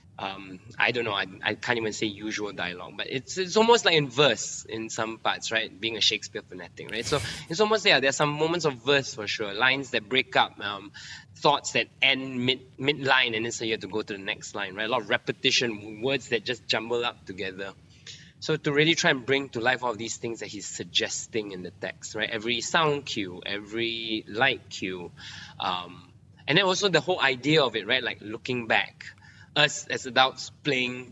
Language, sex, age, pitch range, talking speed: English, male, 20-39, 110-140 Hz, 215 wpm